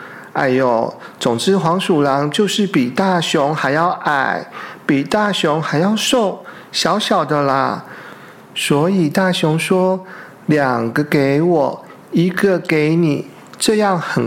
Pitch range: 150-185 Hz